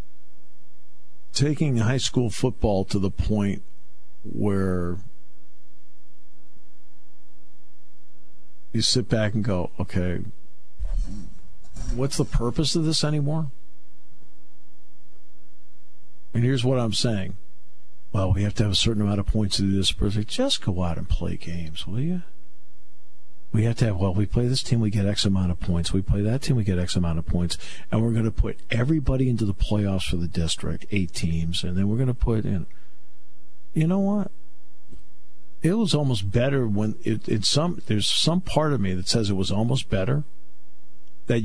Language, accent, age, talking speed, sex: English, American, 50-69, 170 wpm, male